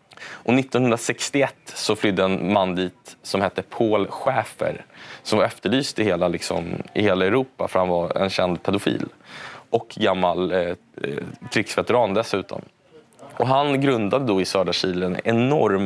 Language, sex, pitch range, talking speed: Swedish, male, 95-115 Hz, 150 wpm